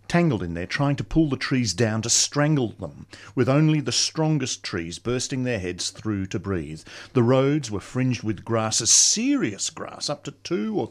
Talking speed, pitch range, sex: 195 wpm, 105-160 Hz, male